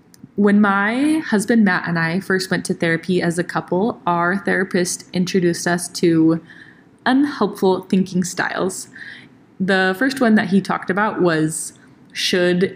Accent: American